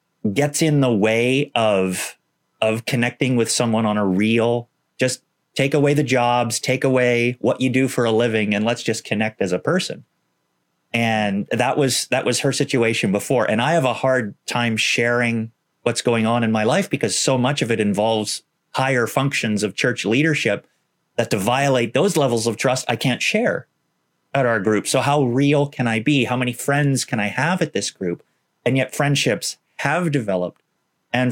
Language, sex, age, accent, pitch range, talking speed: English, male, 30-49, American, 110-135 Hz, 190 wpm